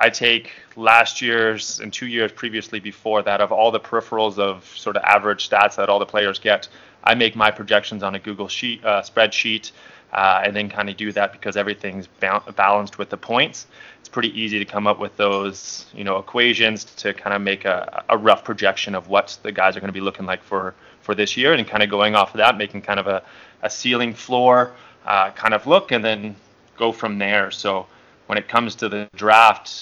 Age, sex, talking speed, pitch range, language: 20-39, male, 225 wpm, 100-110 Hz, English